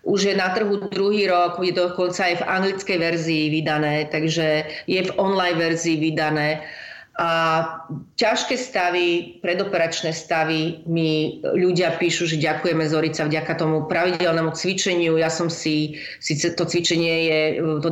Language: Slovak